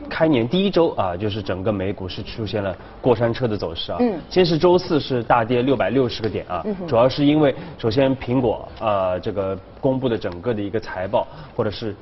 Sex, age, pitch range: male, 20-39, 95-135 Hz